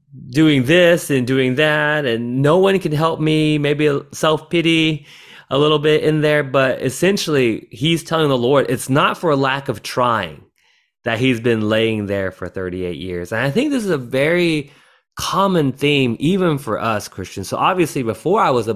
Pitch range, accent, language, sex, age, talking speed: 105-160 Hz, American, English, male, 30-49, 190 wpm